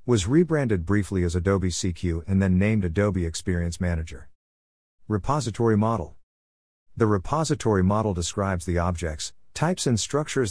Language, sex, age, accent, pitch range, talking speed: English, male, 50-69, American, 85-110 Hz, 130 wpm